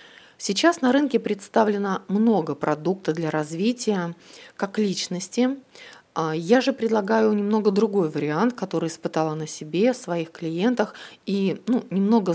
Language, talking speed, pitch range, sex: Russian, 120 wpm, 165-225 Hz, female